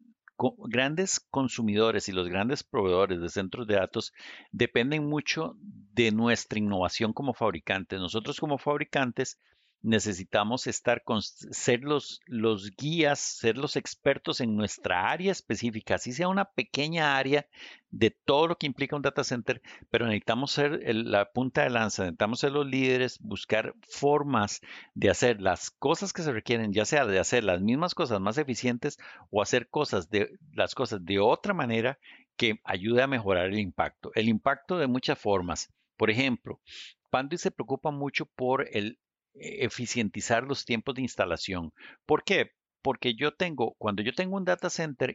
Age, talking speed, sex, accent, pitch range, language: 50-69, 160 wpm, male, Mexican, 110-150 Hz, Spanish